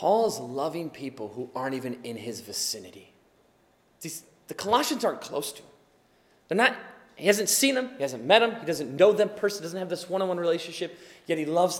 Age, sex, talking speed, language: 30-49, male, 210 wpm, English